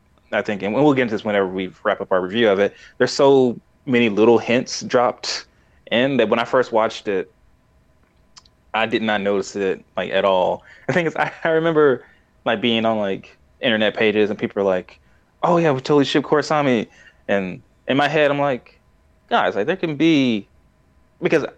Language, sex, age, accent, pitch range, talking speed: English, male, 20-39, American, 95-140 Hz, 195 wpm